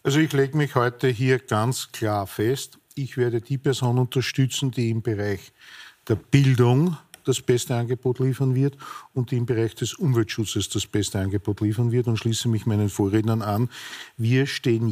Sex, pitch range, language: male, 115-135 Hz, German